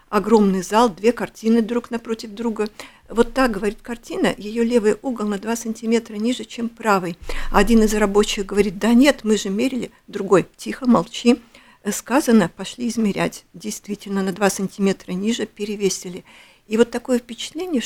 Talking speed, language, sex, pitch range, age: 150 wpm, Russian, female, 200-235 Hz, 50-69